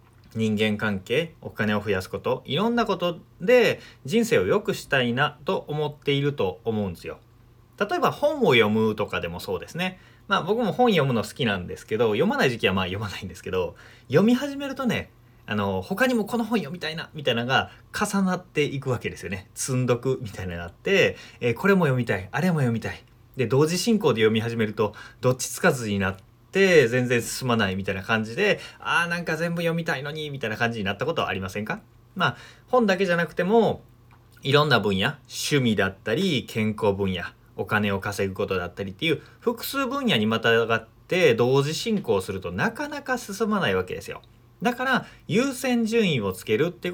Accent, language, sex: native, Japanese, male